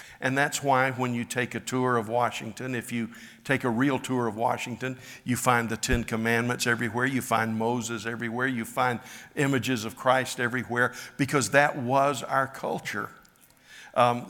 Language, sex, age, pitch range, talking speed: English, male, 60-79, 125-155 Hz, 170 wpm